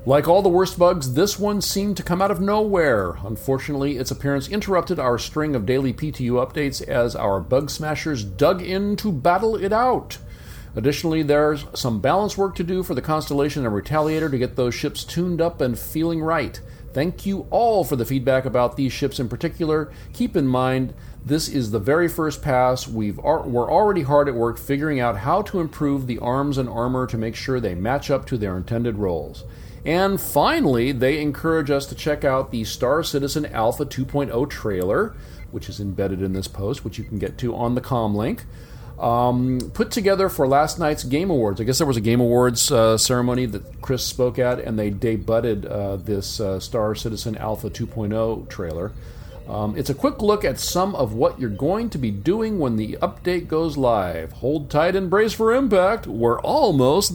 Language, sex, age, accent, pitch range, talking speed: English, male, 40-59, American, 115-160 Hz, 195 wpm